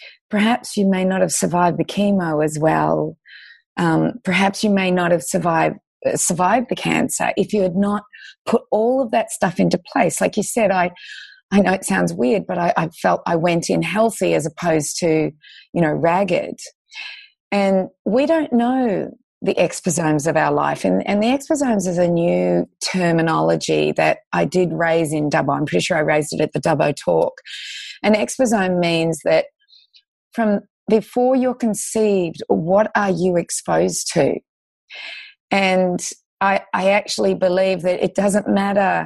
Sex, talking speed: female, 170 wpm